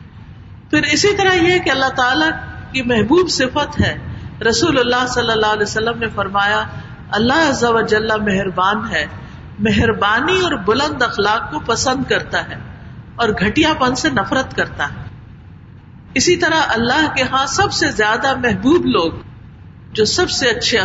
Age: 50-69